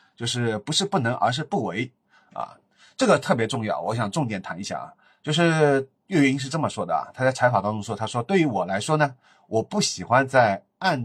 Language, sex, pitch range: Chinese, male, 110-150 Hz